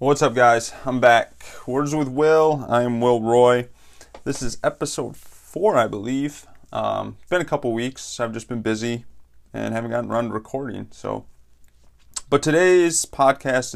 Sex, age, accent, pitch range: male, 30-49, American, 100-130 Hz